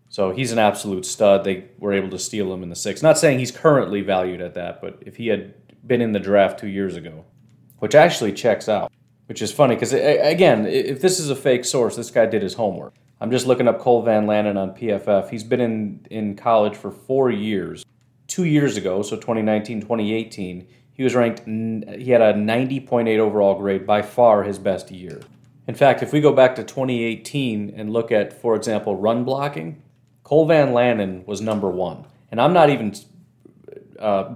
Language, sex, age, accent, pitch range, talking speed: English, male, 30-49, American, 100-125 Hz, 200 wpm